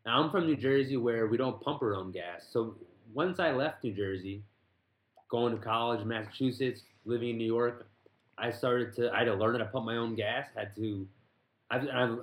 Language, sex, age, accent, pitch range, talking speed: English, male, 20-39, American, 110-130 Hz, 205 wpm